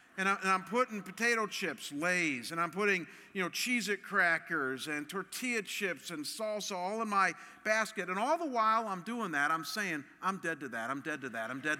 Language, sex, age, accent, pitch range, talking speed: English, male, 50-69, American, 160-230 Hz, 210 wpm